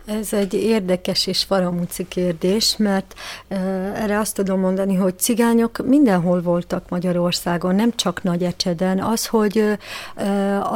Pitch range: 190-205 Hz